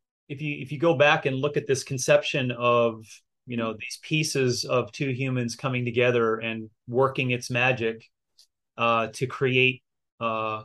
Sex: male